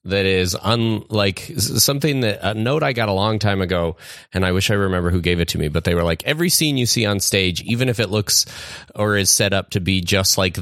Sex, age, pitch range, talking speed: male, 30-49, 95-110 Hz, 255 wpm